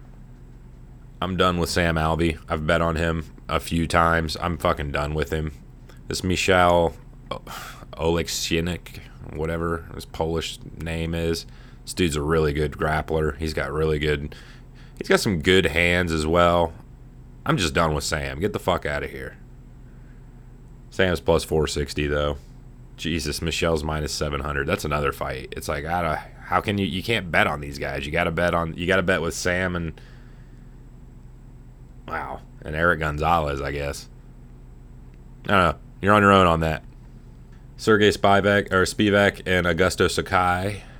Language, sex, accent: English, male, American